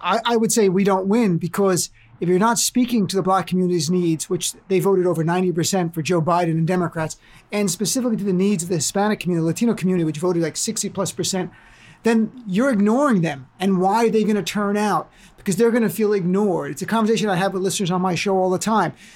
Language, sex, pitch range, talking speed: English, male, 185-235 Hz, 230 wpm